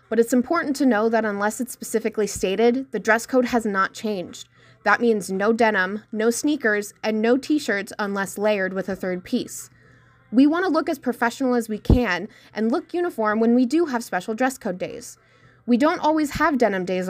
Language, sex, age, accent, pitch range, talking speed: English, female, 20-39, American, 205-270 Hz, 195 wpm